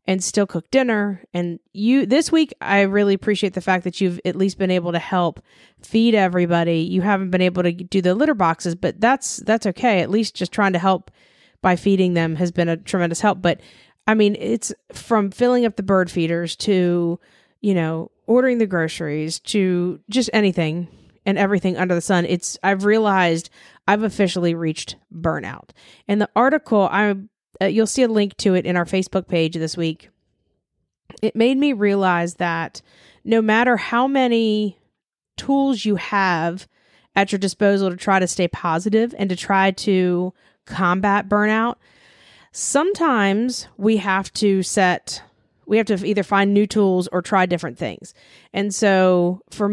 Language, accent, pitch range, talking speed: English, American, 175-210 Hz, 170 wpm